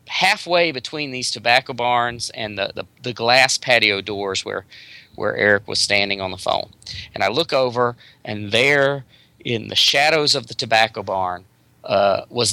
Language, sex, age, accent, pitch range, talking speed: English, male, 40-59, American, 110-140 Hz, 165 wpm